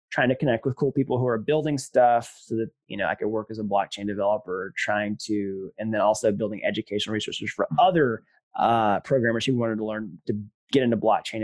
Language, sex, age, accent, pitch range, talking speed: English, male, 20-39, American, 110-170 Hz, 215 wpm